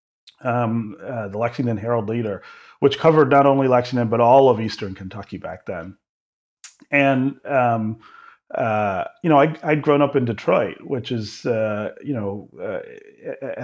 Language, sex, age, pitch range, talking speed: English, male, 30-49, 100-135 Hz, 155 wpm